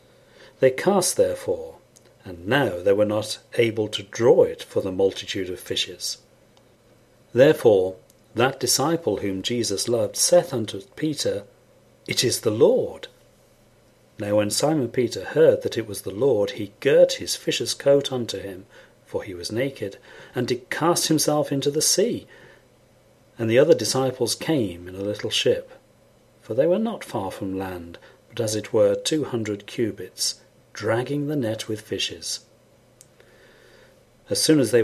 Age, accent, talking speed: 40-59, British, 155 wpm